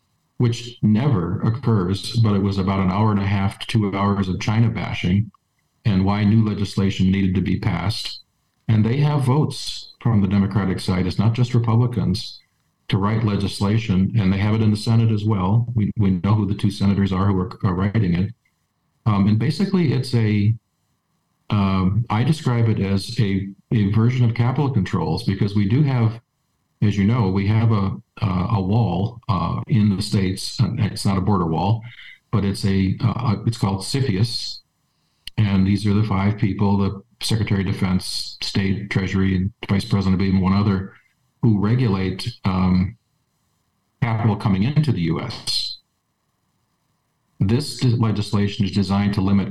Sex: male